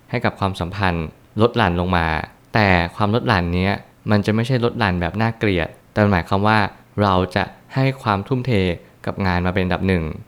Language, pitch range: Thai, 95-115 Hz